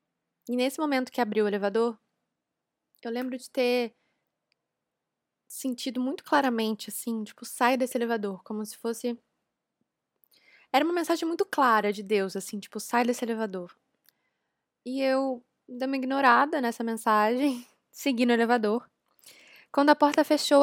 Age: 10-29